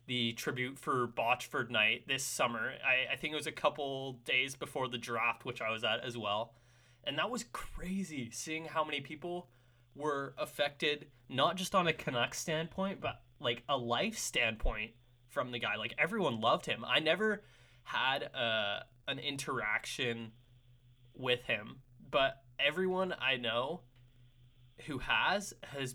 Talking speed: 155 wpm